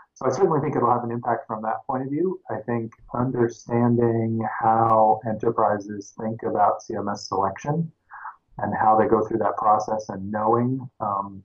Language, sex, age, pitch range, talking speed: English, male, 30-49, 105-120 Hz, 175 wpm